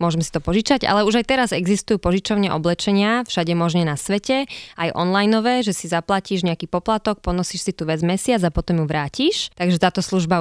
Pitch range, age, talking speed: 175-210 Hz, 20-39, 195 wpm